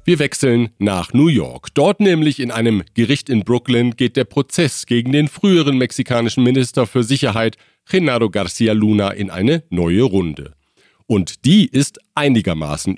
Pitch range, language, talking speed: 105-145 Hz, German, 155 wpm